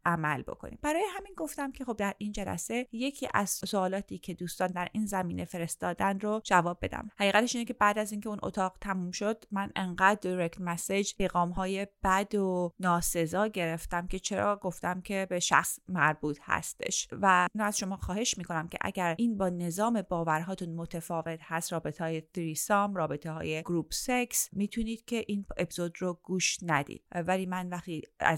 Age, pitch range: 30-49, 175-215 Hz